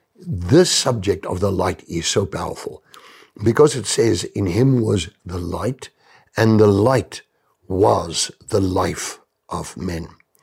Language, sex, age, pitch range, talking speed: English, male, 60-79, 95-130 Hz, 140 wpm